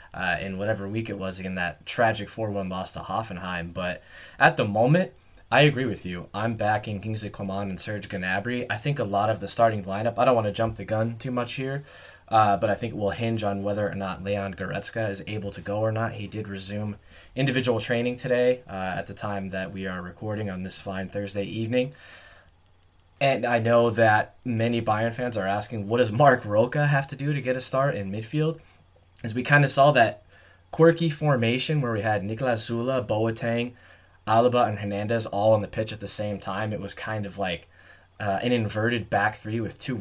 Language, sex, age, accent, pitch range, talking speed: English, male, 20-39, American, 100-125 Hz, 215 wpm